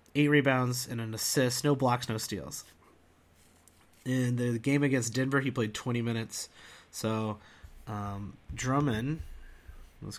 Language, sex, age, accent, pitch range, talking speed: English, male, 30-49, American, 110-155 Hz, 130 wpm